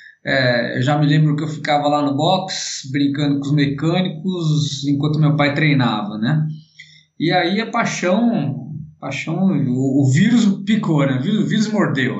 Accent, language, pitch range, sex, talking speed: Brazilian, Portuguese, 145-195 Hz, male, 175 wpm